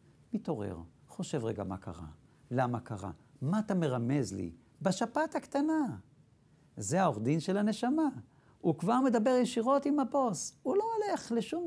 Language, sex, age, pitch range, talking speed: Hebrew, male, 60-79, 130-205 Hz, 145 wpm